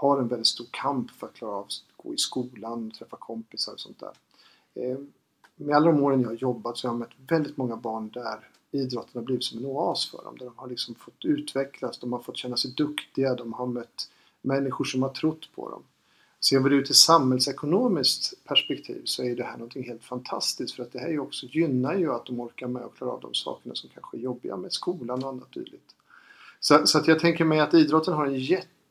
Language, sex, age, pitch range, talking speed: Swedish, male, 50-69, 120-140 Hz, 240 wpm